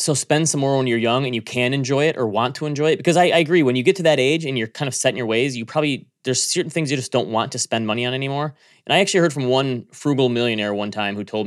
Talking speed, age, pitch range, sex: 320 wpm, 20-39, 115-145 Hz, male